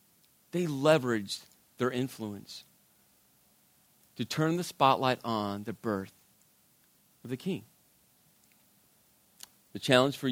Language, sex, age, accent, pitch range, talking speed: English, male, 40-59, American, 125-185 Hz, 100 wpm